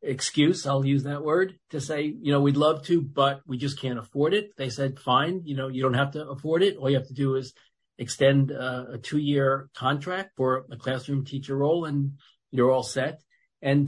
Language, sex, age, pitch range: English, male, 40-59, 130-155 Hz